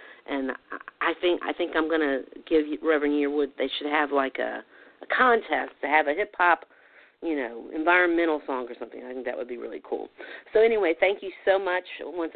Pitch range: 145-195 Hz